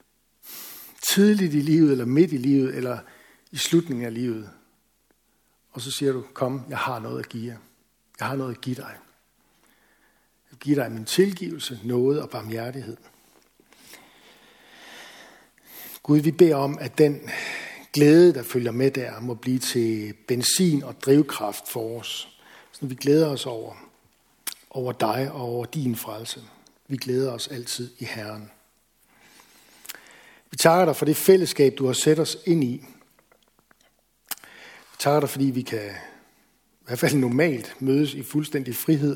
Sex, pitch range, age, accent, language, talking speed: male, 120-150 Hz, 60-79, native, Danish, 150 wpm